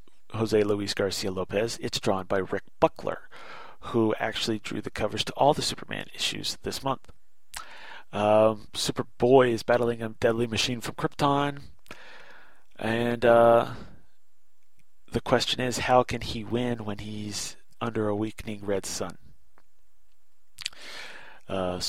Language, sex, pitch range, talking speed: English, male, 105-125 Hz, 130 wpm